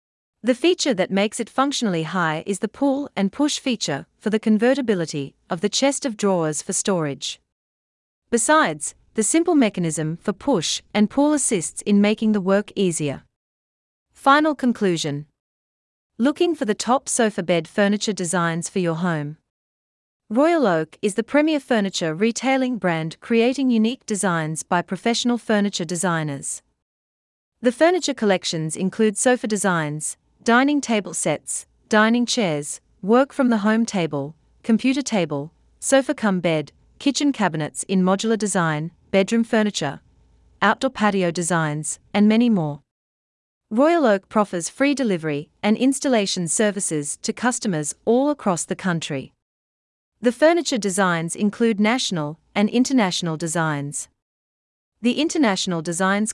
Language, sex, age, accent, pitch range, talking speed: English, female, 40-59, Australian, 160-235 Hz, 130 wpm